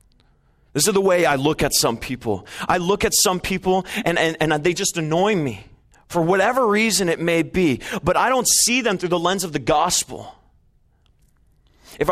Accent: American